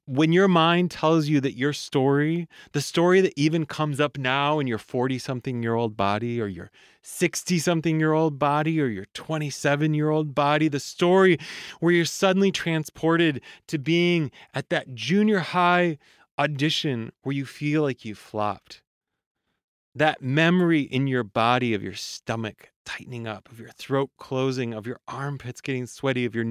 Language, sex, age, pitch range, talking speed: English, male, 30-49, 125-160 Hz, 170 wpm